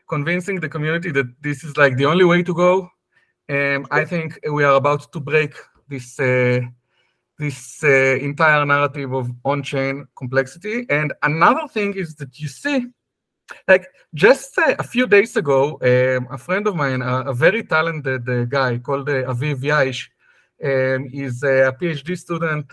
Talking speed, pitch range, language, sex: 170 wpm, 135-185 Hz, English, male